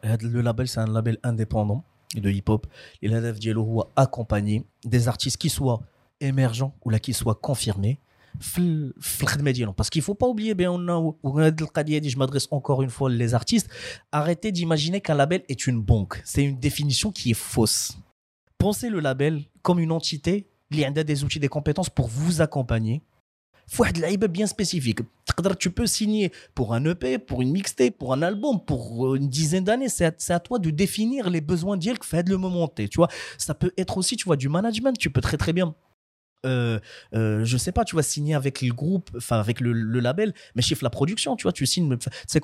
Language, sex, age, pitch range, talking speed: Arabic, male, 30-49, 120-170 Hz, 190 wpm